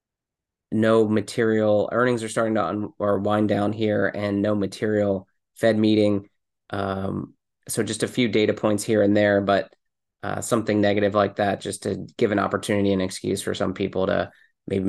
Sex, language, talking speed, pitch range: male, English, 175 wpm, 100-115 Hz